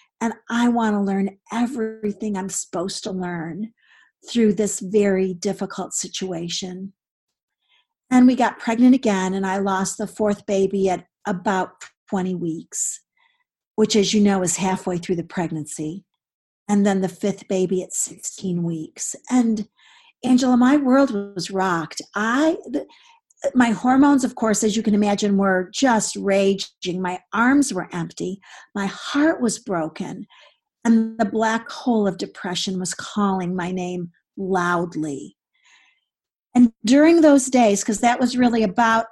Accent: American